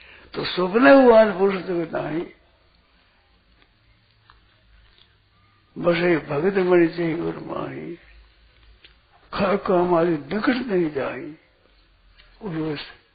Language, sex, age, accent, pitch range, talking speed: Hindi, male, 60-79, native, 145-210 Hz, 75 wpm